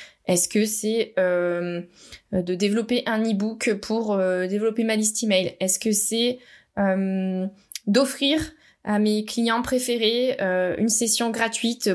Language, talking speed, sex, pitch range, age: French, 130 wpm, female, 200-250 Hz, 20-39